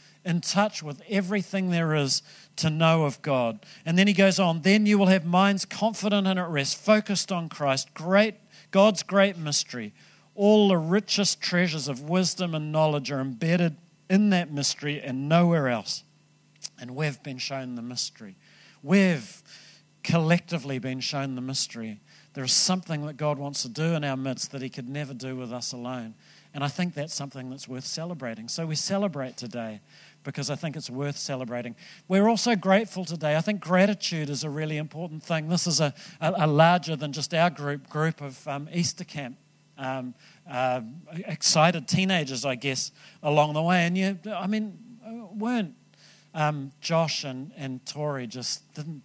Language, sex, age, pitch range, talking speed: English, male, 50-69, 140-180 Hz, 175 wpm